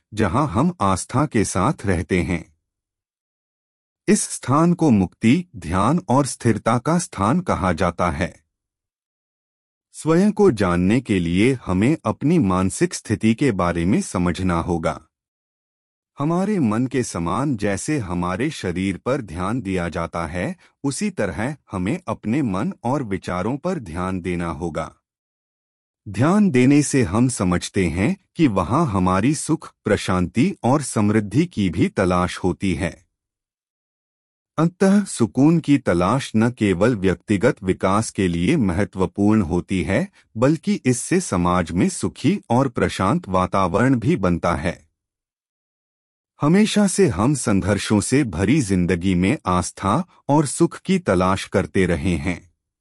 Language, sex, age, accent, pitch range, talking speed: Hindi, male, 30-49, native, 90-140 Hz, 130 wpm